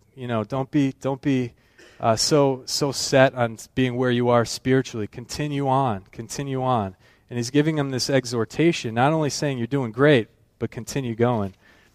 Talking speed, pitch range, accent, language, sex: 175 wpm, 110-135 Hz, American, English, male